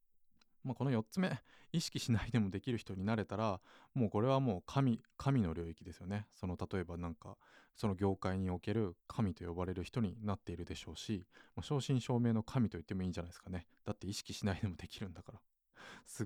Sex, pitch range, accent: male, 95-130 Hz, native